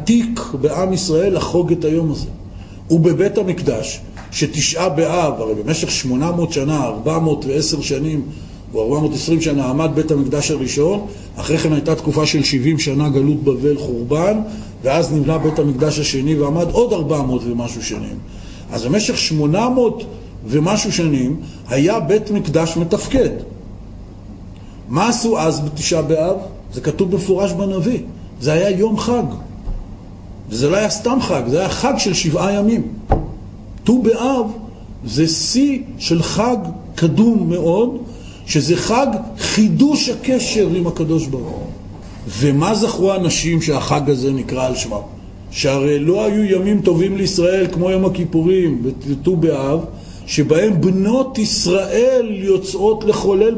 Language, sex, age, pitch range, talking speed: Hebrew, male, 40-59, 130-195 Hz, 130 wpm